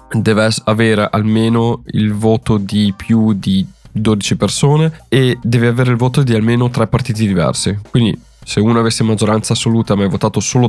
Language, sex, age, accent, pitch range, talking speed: Italian, male, 20-39, native, 100-125 Hz, 170 wpm